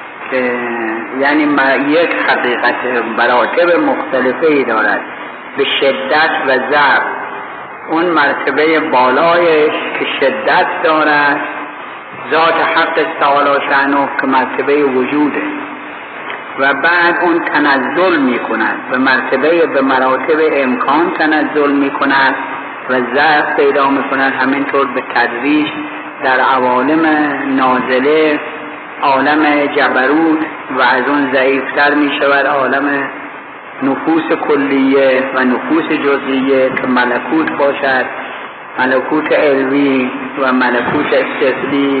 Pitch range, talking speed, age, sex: 130-150 Hz, 105 wpm, 50-69, male